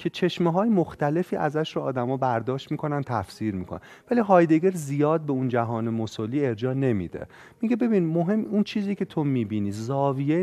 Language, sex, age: Persian, male, 30-49